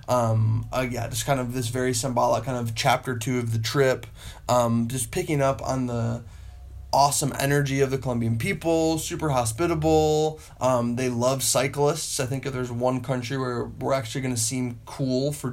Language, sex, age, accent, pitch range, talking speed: English, male, 20-39, American, 115-135 Hz, 185 wpm